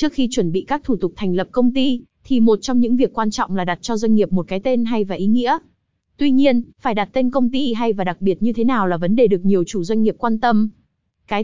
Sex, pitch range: female, 205-255 Hz